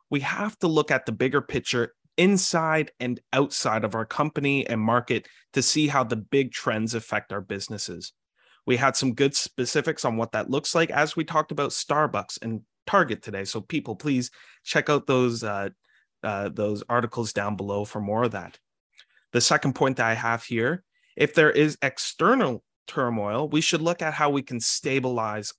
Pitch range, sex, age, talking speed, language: 115-145 Hz, male, 30-49, 185 wpm, English